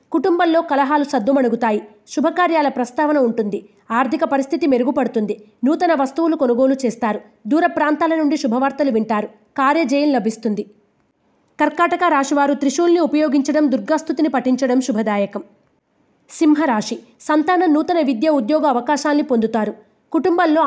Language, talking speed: Telugu, 100 wpm